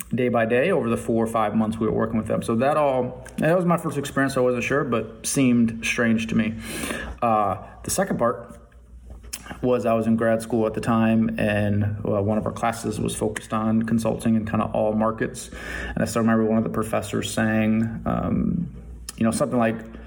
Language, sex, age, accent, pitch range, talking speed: English, male, 30-49, American, 110-115 Hz, 210 wpm